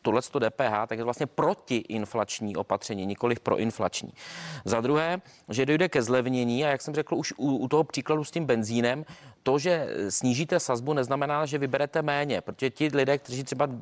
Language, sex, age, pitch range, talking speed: Czech, male, 30-49, 115-145 Hz, 185 wpm